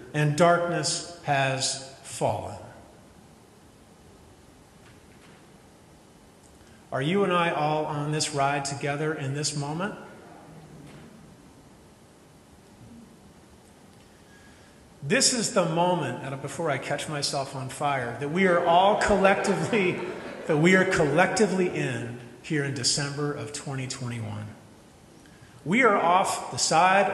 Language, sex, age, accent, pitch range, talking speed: English, male, 40-59, American, 130-175 Hz, 100 wpm